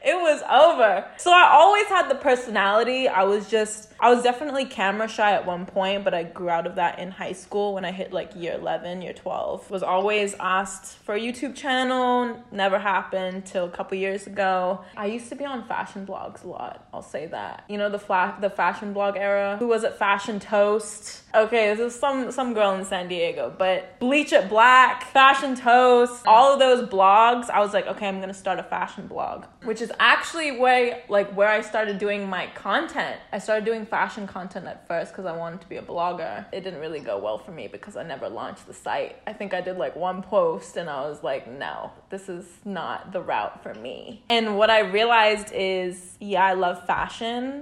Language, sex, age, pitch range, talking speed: English, female, 20-39, 185-235 Hz, 215 wpm